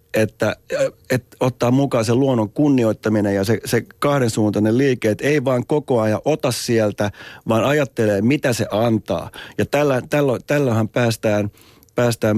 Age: 30-49